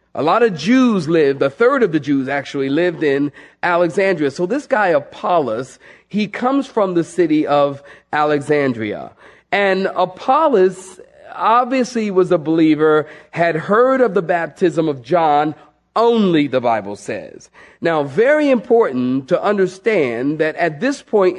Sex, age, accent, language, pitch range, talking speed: male, 40-59, American, English, 155-225 Hz, 145 wpm